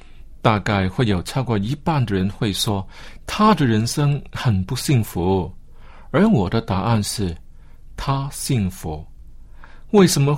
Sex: male